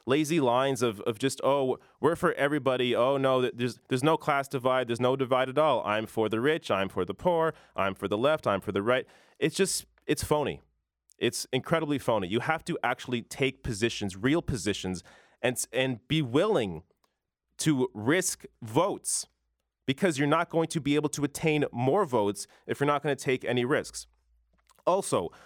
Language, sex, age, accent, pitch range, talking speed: English, male, 30-49, American, 120-155 Hz, 185 wpm